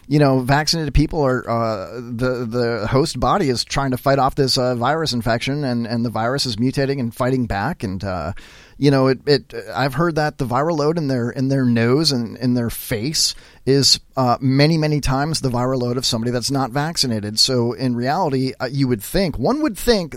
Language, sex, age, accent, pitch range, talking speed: English, male, 30-49, American, 115-150 Hz, 215 wpm